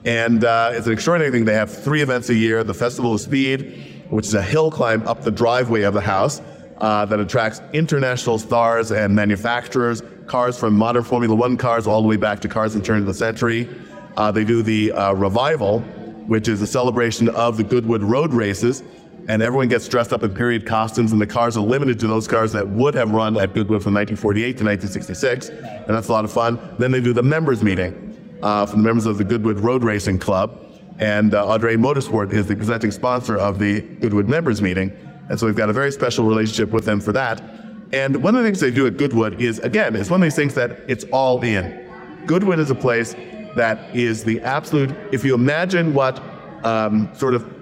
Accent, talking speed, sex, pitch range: American, 220 wpm, male, 110-130 Hz